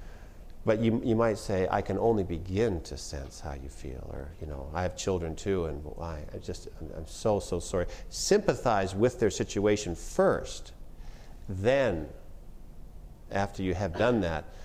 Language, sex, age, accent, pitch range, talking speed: English, male, 50-69, American, 85-110 Hz, 160 wpm